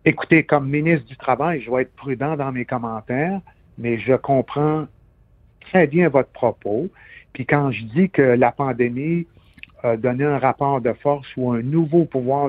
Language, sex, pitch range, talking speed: French, male, 115-150 Hz, 175 wpm